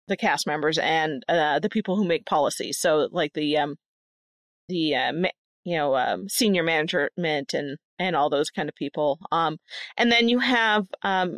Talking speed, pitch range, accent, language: 185 wpm, 155-205 Hz, American, English